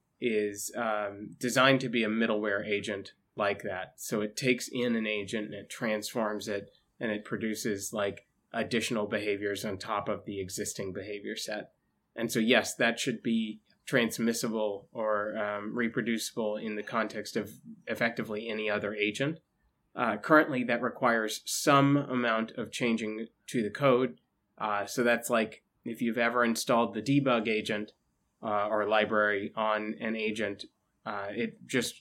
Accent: American